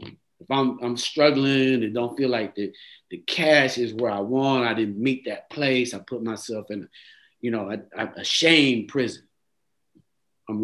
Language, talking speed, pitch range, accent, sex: English, 175 wpm, 115-135 Hz, American, male